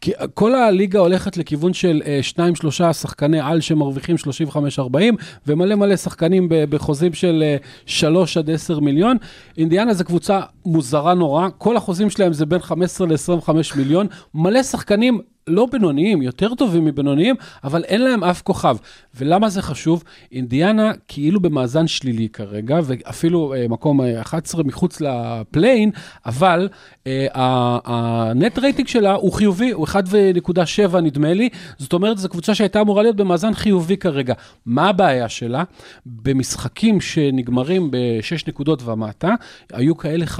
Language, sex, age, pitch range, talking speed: Hebrew, male, 40-59, 145-195 Hz, 140 wpm